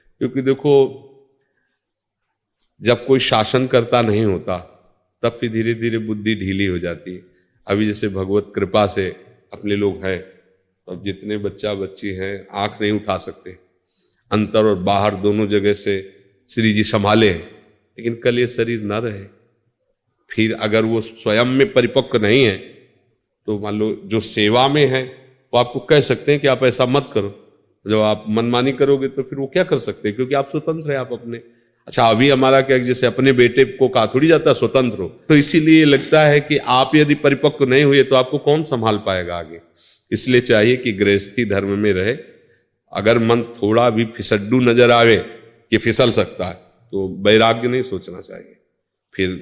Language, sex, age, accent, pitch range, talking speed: Hindi, male, 40-59, native, 100-130 Hz, 175 wpm